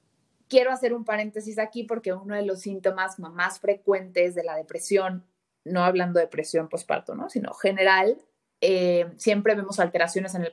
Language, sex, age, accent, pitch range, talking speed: Spanish, female, 30-49, Mexican, 180-240 Hz, 160 wpm